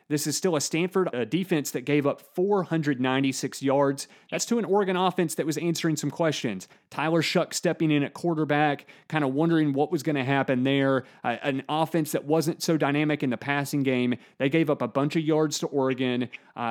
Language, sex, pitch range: English, male, 135-160 Hz